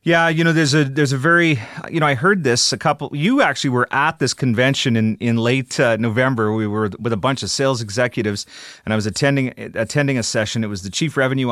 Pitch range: 115-155 Hz